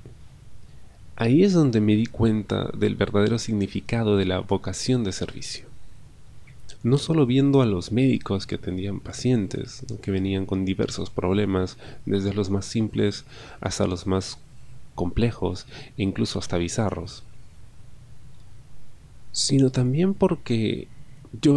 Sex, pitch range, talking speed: male, 105-130 Hz, 120 wpm